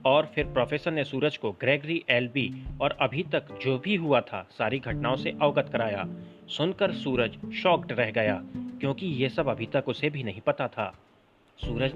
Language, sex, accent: Hindi, male, native